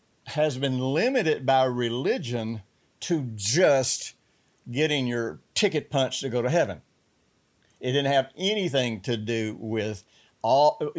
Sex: male